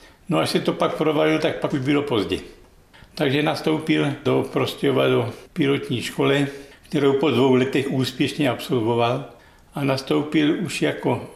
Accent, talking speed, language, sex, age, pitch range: native, 150 wpm, Czech, male, 60-79, 130-145 Hz